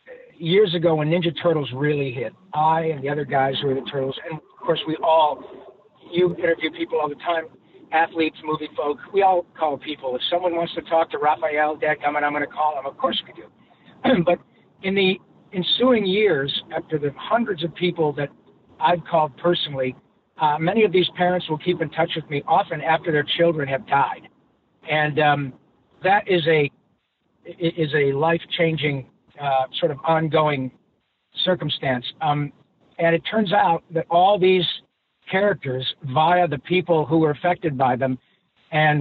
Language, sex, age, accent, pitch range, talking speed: English, male, 60-79, American, 145-170 Hz, 175 wpm